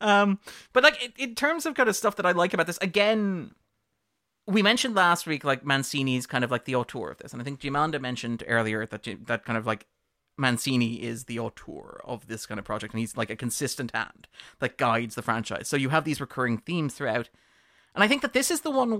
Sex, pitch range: male, 120-170 Hz